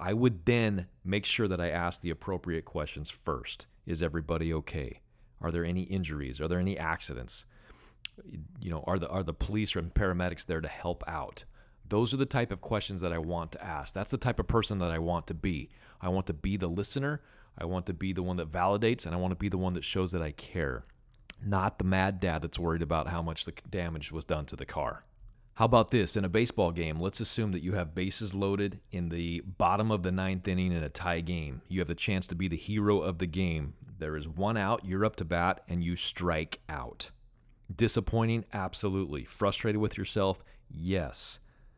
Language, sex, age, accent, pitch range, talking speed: English, male, 30-49, American, 85-100 Hz, 220 wpm